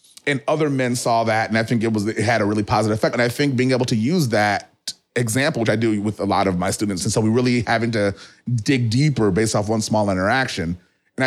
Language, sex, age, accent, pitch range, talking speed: English, male, 30-49, American, 110-145 Hz, 255 wpm